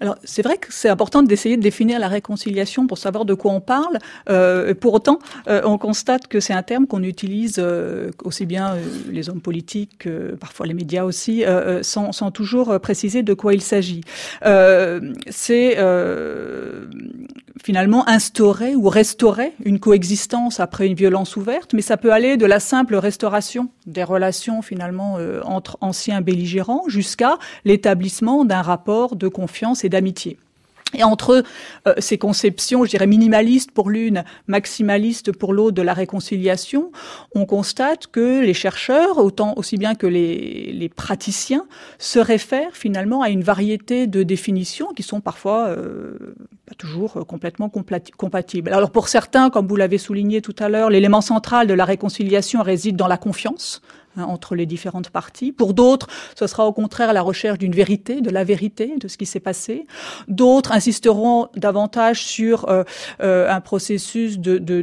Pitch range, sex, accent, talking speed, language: 190-235 Hz, female, French, 170 wpm, French